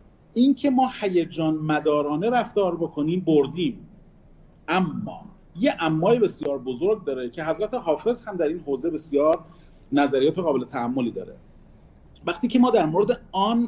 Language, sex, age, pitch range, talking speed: Persian, male, 40-59, 150-215 Hz, 135 wpm